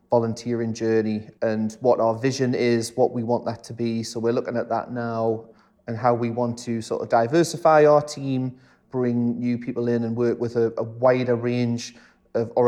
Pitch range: 110-120 Hz